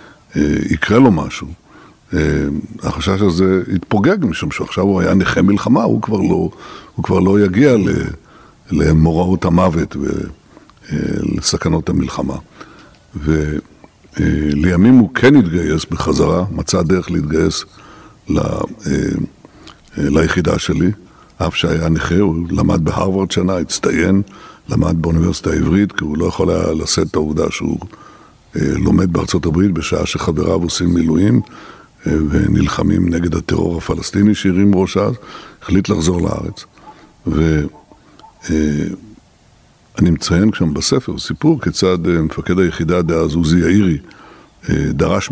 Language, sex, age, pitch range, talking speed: Hebrew, male, 60-79, 80-95 Hz, 110 wpm